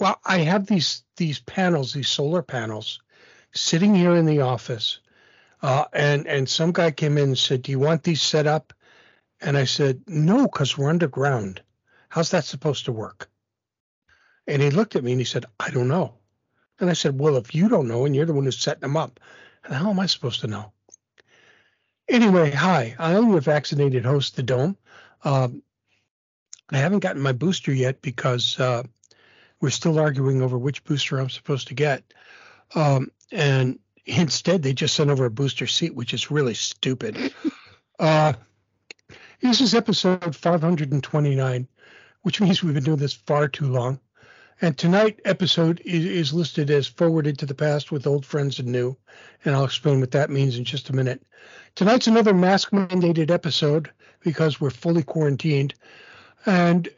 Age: 60-79